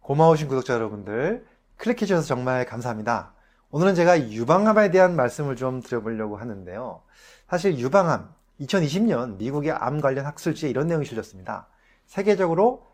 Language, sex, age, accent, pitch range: Korean, male, 30-49, native, 120-175 Hz